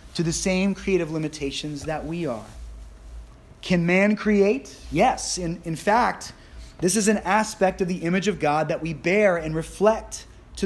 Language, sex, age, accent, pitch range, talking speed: English, male, 30-49, American, 125-185 Hz, 170 wpm